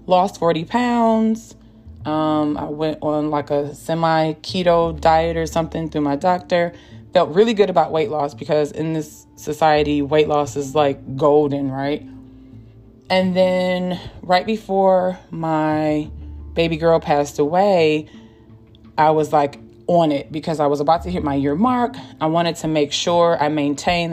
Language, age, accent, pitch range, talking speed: English, 20-39, American, 140-165 Hz, 155 wpm